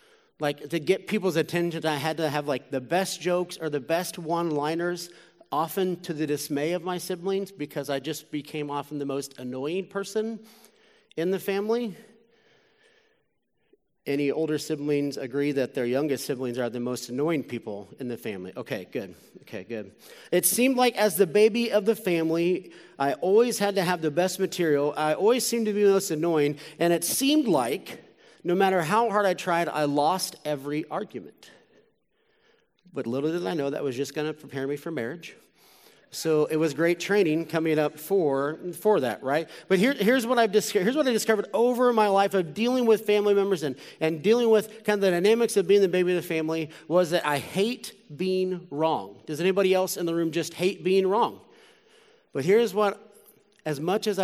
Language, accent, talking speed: English, American, 190 wpm